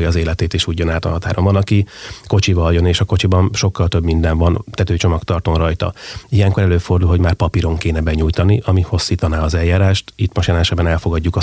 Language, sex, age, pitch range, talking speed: Hungarian, male, 30-49, 85-100 Hz, 185 wpm